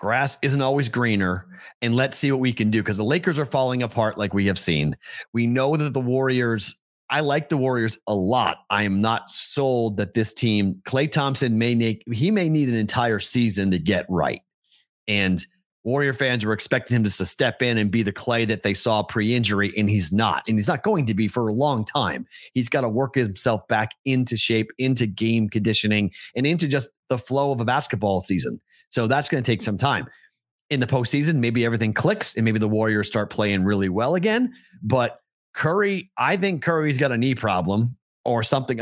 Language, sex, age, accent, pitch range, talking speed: English, male, 30-49, American, 105-130 Hz, 210 wpm